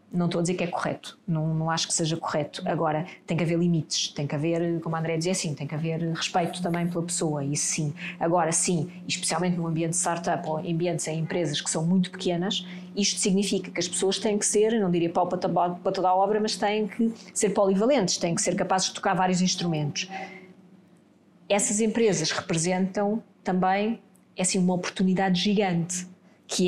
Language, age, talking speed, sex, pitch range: Portuguese, 20-39, 195 wpm, female, 175-210 Hz